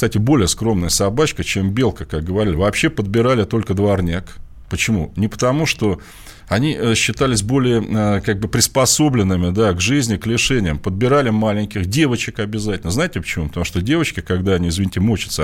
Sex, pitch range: male, 95-120 Hz